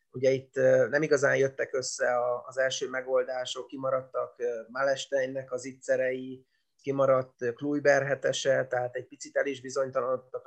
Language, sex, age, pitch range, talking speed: Hungarian, male, 30-49, 130-145 Hz, 125 wpm